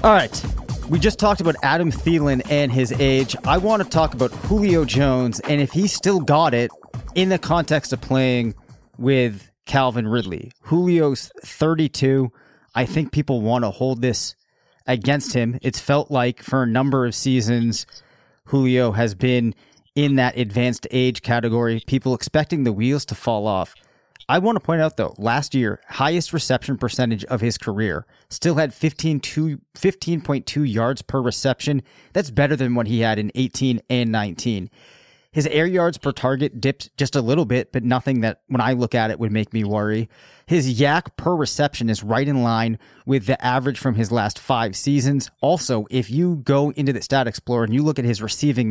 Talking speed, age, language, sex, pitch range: 185 wpm, 30-49, English, male, 120-145 Hz